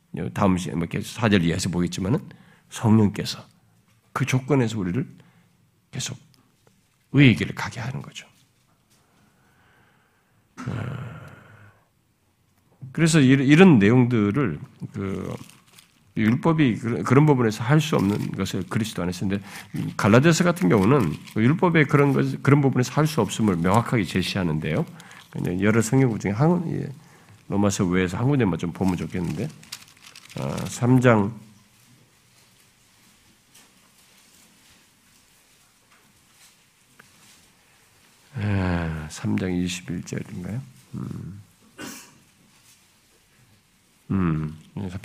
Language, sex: Korean, male